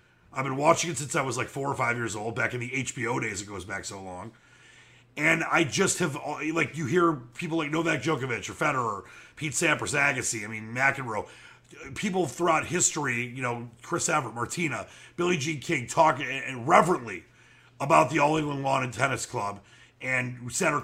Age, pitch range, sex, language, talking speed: 30-49, 120-160 Hz, male, English, 185 wpm